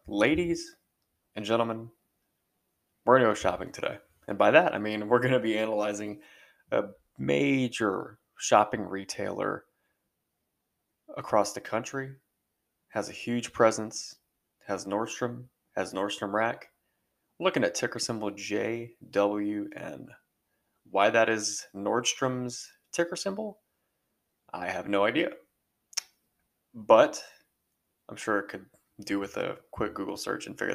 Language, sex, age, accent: English, male, 20-39, American